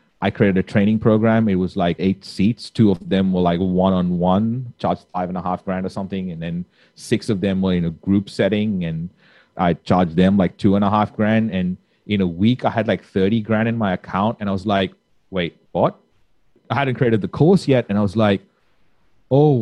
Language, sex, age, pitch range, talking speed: English, male, 30-49, 95-115 Hz, 225 wpm